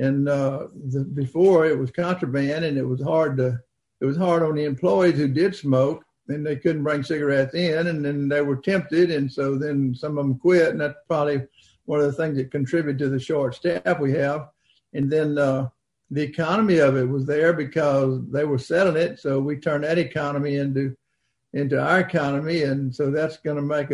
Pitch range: 140-165 Hz